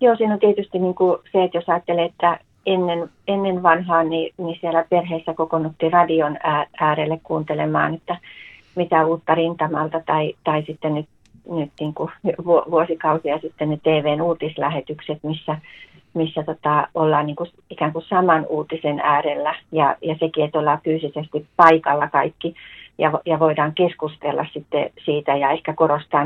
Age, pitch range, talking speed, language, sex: 40-59, 150-170 Hz, 130 wpm, Finnish, female